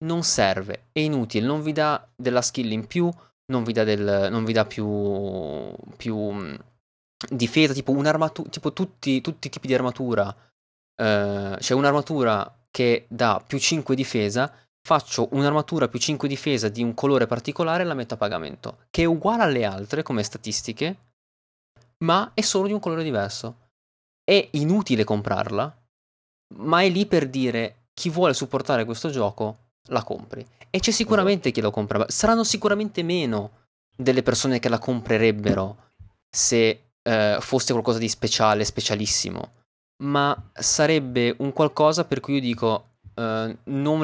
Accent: native